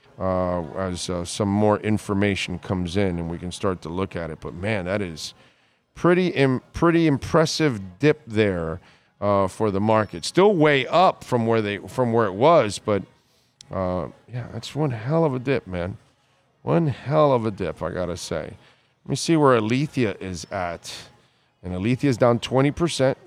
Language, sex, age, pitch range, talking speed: English, male, 40-59, 105-140 Hz, 185 wpm